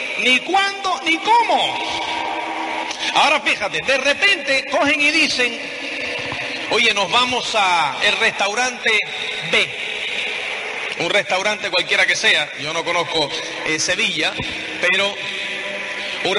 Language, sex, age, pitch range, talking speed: Spanish, male, 40-59, 205-300 Hz, 110 wpm